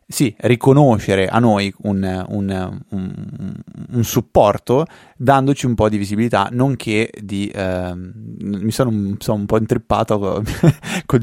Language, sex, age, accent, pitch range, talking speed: Italian, male, 20-39, native, 100-125 Hz, 120 wpm